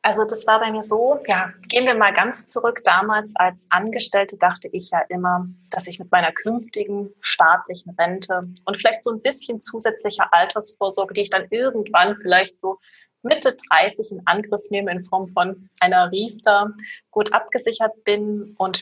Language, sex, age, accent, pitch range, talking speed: German, female, 20-39, German, 180-220 Hz, 170 wpm